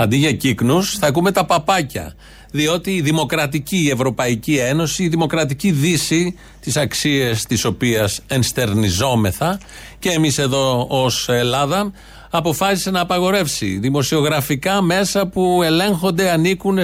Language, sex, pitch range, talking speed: Greek, male, 135-185 Hz, 120 wpm